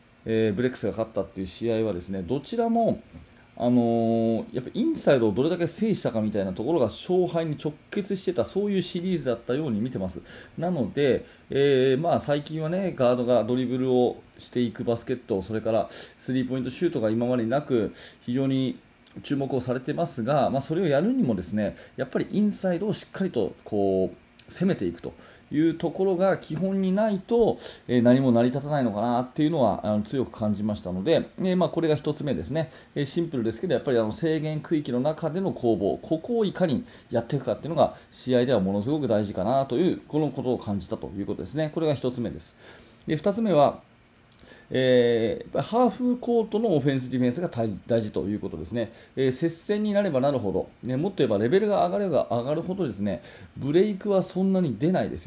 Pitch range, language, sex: 115-170 Hz, Japanese, male